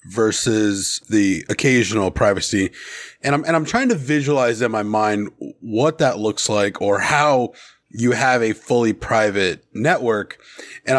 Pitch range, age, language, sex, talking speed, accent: 120-165 Hz, 30-49, English, male, 145 wpm, American